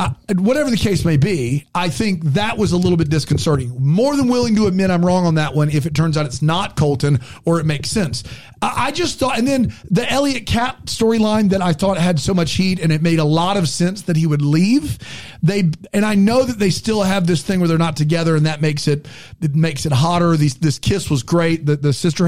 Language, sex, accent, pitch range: English, male, American, 150-195 Hz